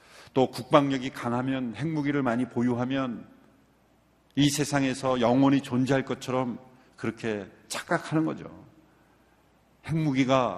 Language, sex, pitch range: Korean, male, 120-150 Hz